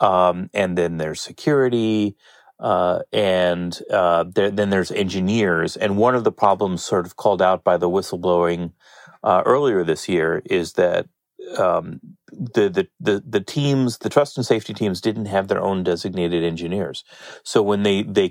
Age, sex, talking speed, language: 30-49, male, 160 wpm, English